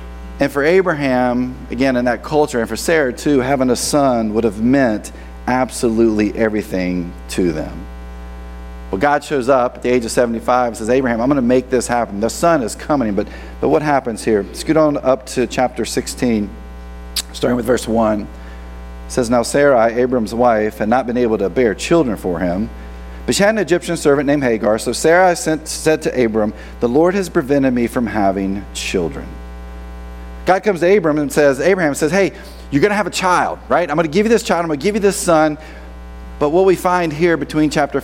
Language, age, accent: English, 40-59, American